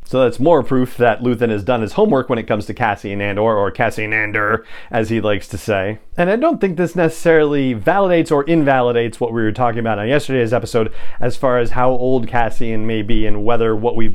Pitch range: 110-140 Hz